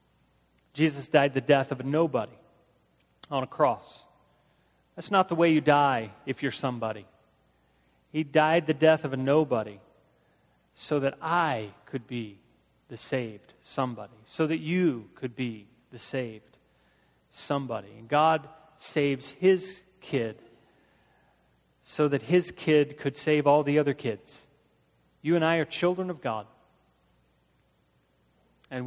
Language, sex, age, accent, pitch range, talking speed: English, male, 30-49, American, 120-170 Hz, 135 wpm